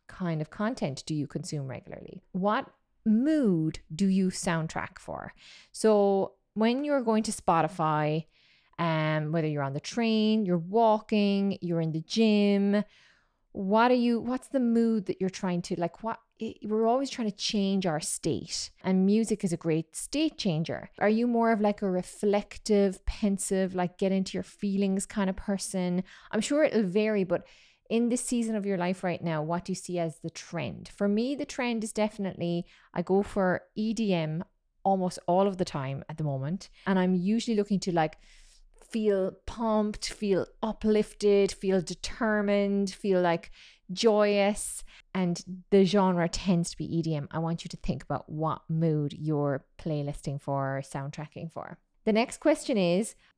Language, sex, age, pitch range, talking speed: English, female, 20-39, 170-215 Hz, 170 wpm